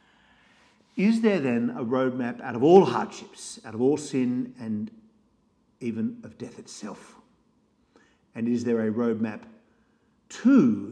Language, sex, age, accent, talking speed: English, male, 50-69, Australian, 130 wpm